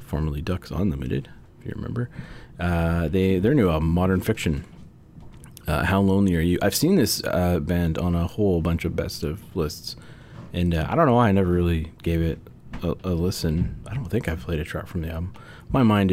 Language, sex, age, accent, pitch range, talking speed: English, male, 30-49, American, 80-100 Hz, 210 wpm